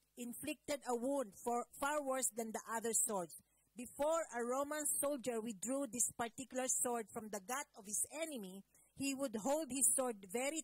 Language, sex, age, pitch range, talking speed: English, female, 50-69, 210-265 Hz, 165 wpm